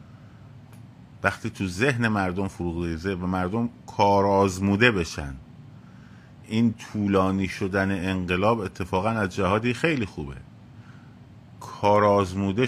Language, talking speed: Persian, 90 wpm